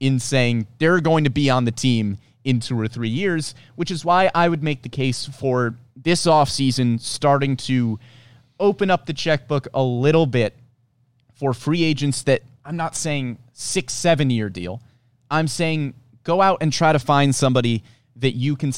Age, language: 30-49, English